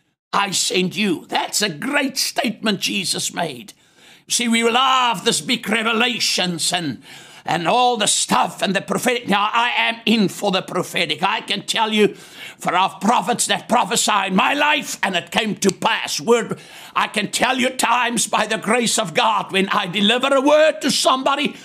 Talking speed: 175 wpm